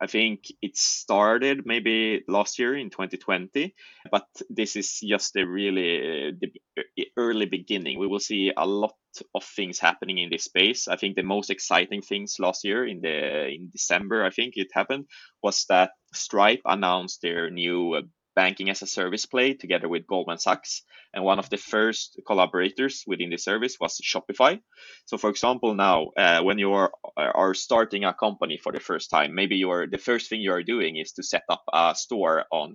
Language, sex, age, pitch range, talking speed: Swedish, male, 20-39, 95-110 Hz, 185 wpm